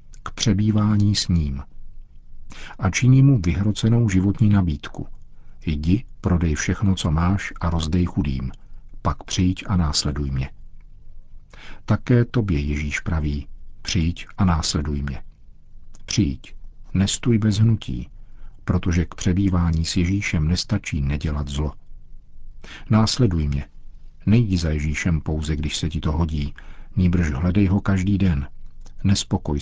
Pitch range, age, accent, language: 80-100 Hz, 50-69, native, Czech